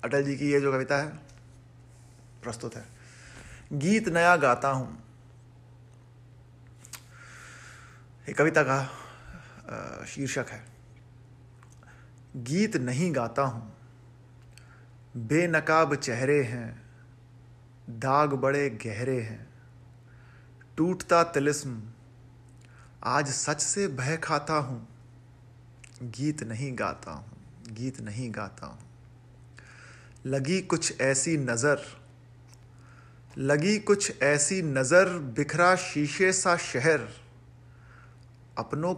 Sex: male